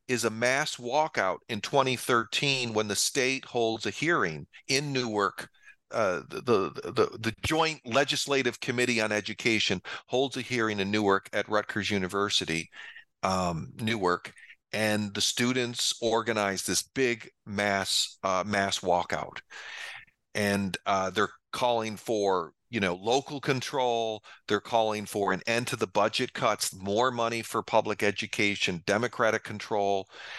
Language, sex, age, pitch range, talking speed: English, male, 40-59, 105-130 Hz, 135 wpm